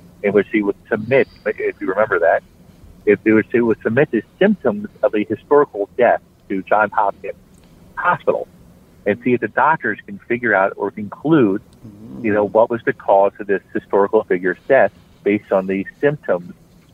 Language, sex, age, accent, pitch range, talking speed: English, male, 50-69, American, 100-125 Hz, 170 wpm